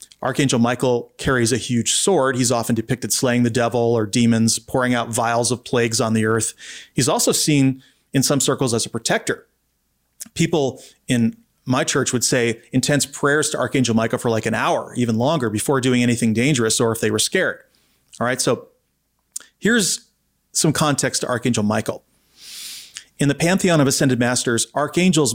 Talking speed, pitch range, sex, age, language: 175 wpm, 115-140 Hz, male, 30-49, English